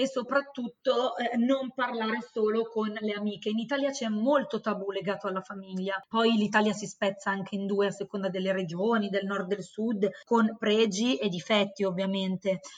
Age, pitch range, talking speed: 20-39, 205-235 Hz, 180 wpm